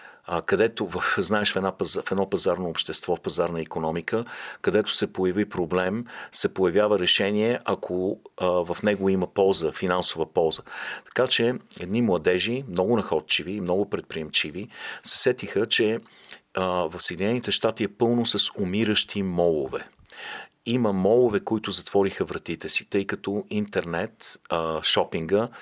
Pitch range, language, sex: 90-115 Hz, Bulgarian, male